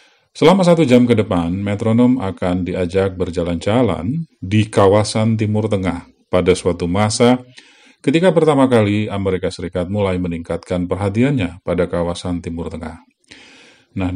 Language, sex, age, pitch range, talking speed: Indonesian, male, 40-59, 90-125 Hz, 125 wpm